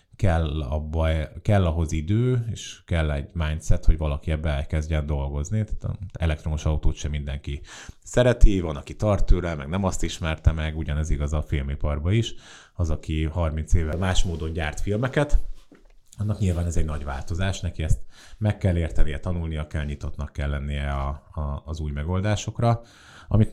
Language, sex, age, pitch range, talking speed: Hungarian, male, 30-49, 75-95 Hz, 160 wpm